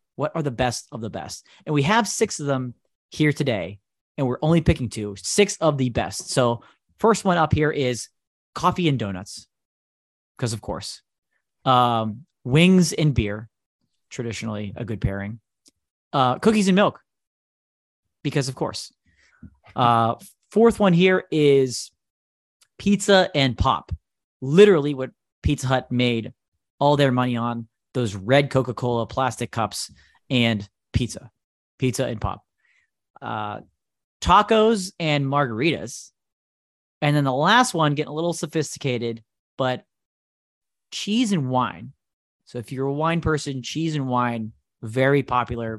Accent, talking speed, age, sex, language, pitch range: American, 140 wpm, 30-49, male, English, 115-155 Hz